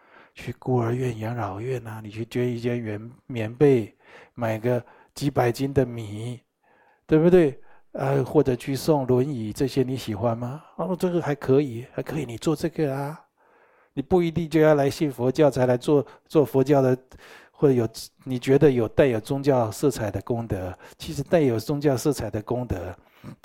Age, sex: 60-79, male